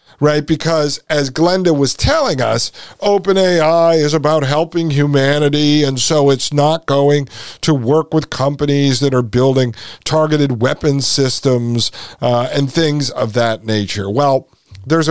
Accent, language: American, English